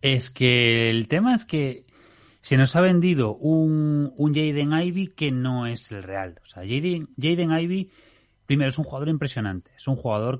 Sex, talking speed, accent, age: male, 185 wpm, Spanish, 30-49